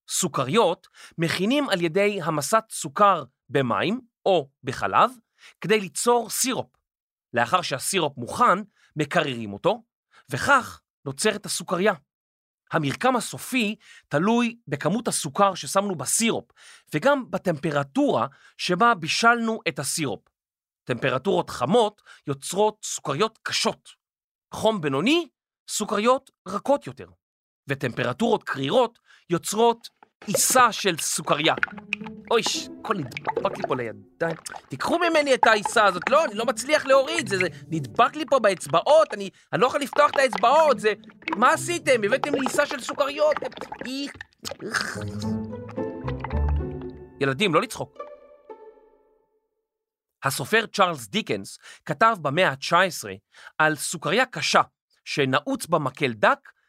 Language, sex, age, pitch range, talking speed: Hebrew, male, 40-59, 165-260 Hz, 110 wpm